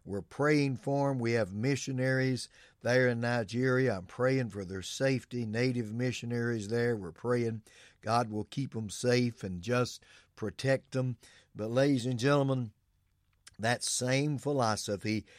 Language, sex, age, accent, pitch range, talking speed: English, male, 60-79, American, 110-135 Hz, 140 wpm